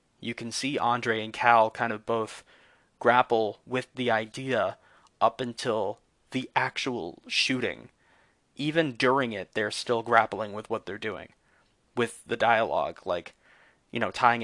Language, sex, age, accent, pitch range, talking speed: English, male, 20-39, American, 115-130 Hz, 145 wpm